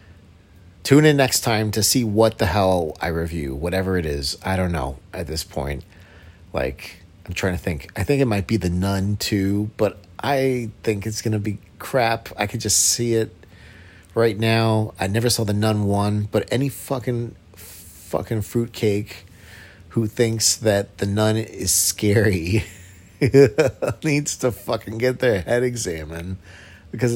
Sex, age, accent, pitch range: male, 40-59, American, 90-115 Hz